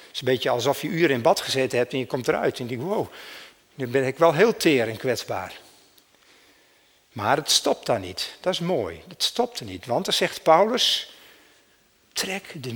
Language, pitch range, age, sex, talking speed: Dutch, 130-175 Hz, 60-79, male, 210 wpm